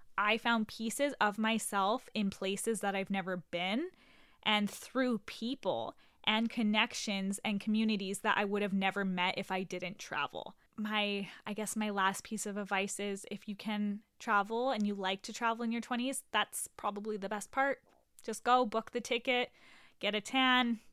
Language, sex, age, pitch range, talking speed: English, female, 10-29, 210-270 Hz, 180 wpm